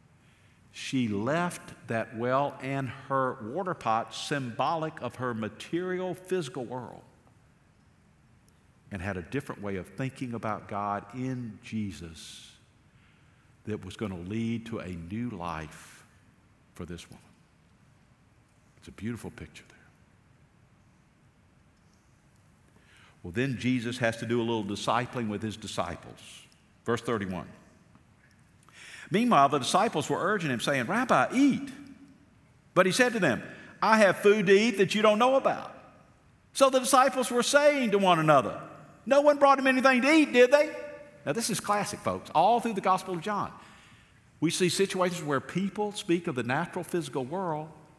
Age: 50-69